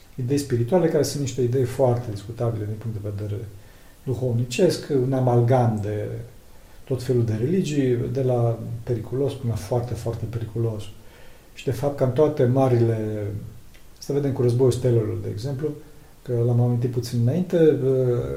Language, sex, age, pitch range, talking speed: Romanian, male, 40-59, 115-140 Hz, 155 wpm